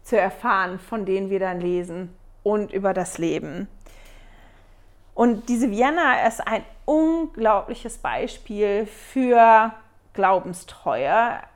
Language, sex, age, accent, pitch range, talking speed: German, female, 40-59, German, 190-240 Hz, 105 wpm